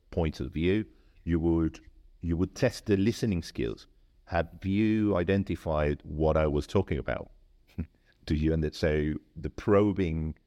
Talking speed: 145 wpm